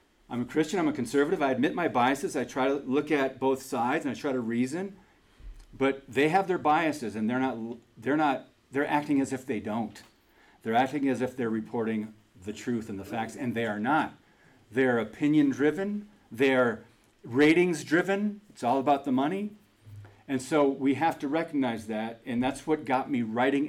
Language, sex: English, male